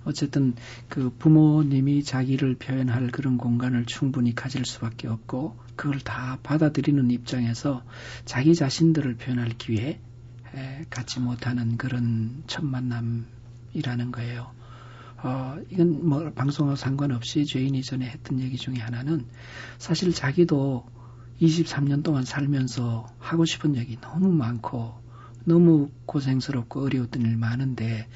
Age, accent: 40-59, native